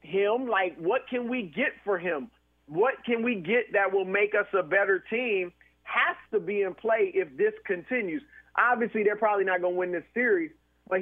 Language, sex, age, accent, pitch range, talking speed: English, male, 40-59, American, 180-240 Hz, 200 wpm